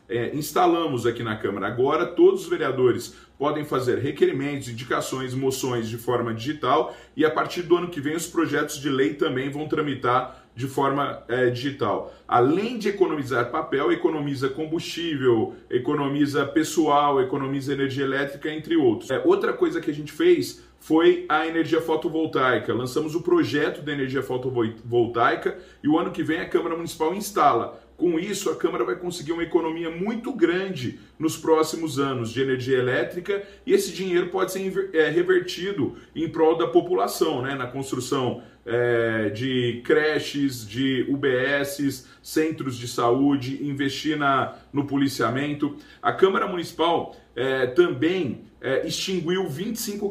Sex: male